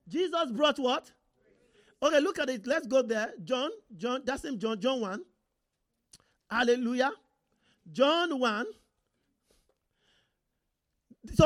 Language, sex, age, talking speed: English, male, 50-69, 110 wpm